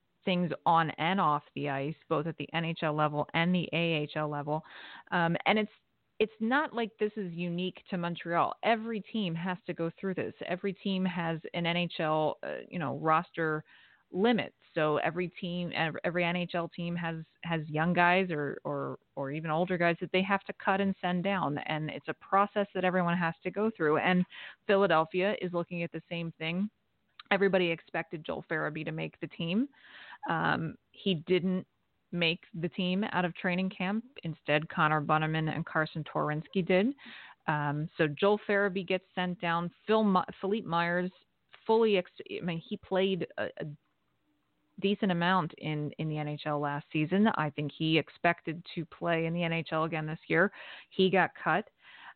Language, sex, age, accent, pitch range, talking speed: English, female, 30-49, American, 160-190 Hz, 175 wpm